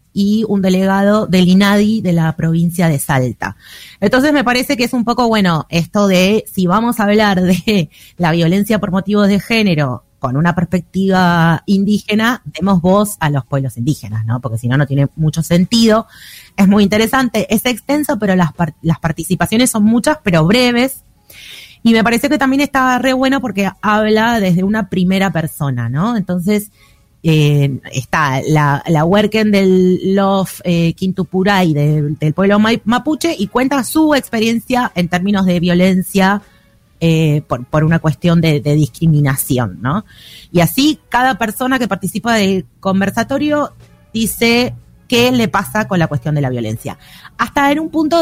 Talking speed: 165 wpm